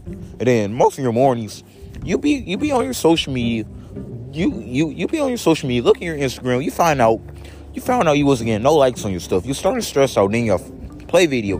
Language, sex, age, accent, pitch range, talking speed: English, male, 30-49, American, 95-135 Hz, 255 wpm